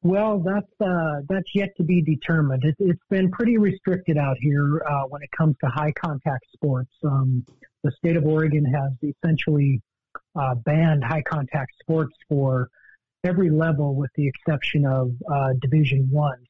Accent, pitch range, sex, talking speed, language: American, 135-160 Hz, male, 165 wpm, English